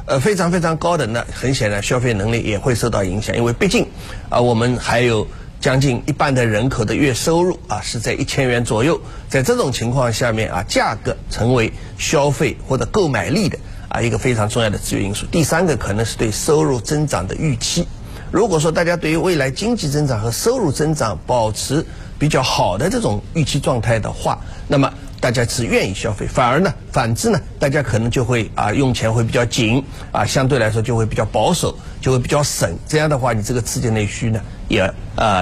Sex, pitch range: male, 110-145 Hz